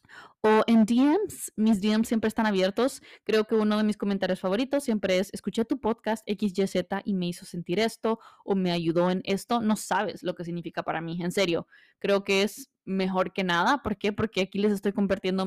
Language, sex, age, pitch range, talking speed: Spanish, female, 20-39, 195-235 Hz, 205 wpm